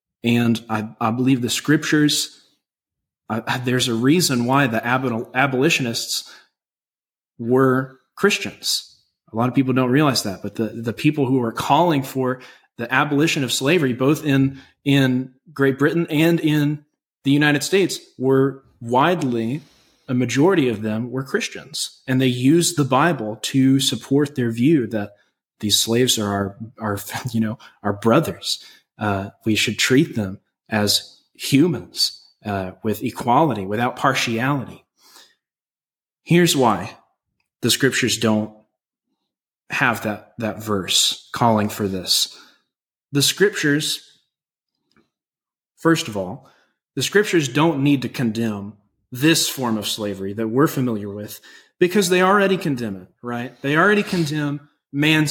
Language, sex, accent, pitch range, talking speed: English, male, American, 110-145 Hz, 140 wpm